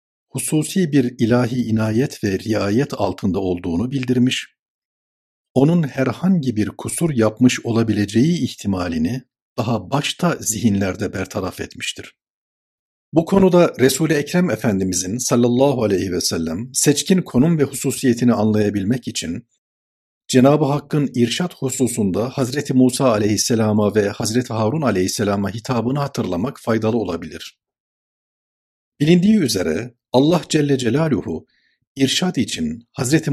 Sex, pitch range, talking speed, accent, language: male, 100-140 Hz, 105 wpm, native, Turkish